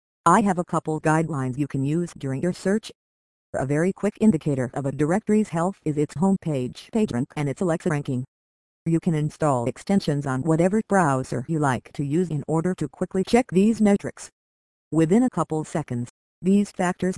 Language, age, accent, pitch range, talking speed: English, 50-69, American, 135-185 Hz, 180 wpm